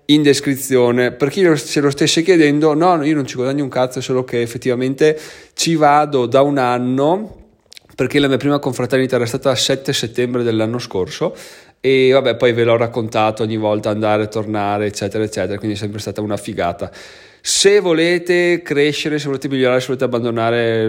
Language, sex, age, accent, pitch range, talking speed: Italian, male, 20-39, native, 115-140 Hz, 180 wpm